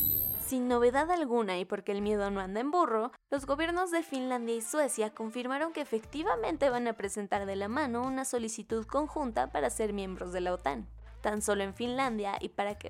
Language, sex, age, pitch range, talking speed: Spanish, female, 20-39, 205-265 Hz, 195 wpm